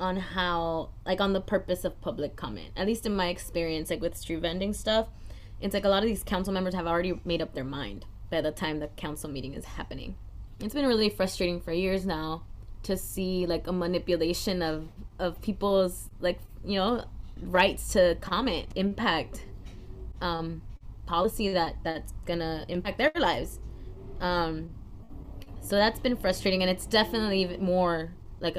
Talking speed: 170 wpm